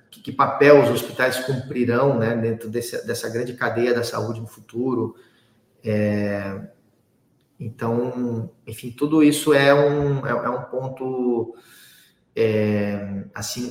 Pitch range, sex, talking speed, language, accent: 120-150 Hz, male, 105 wpm, Portuguese, Brazilian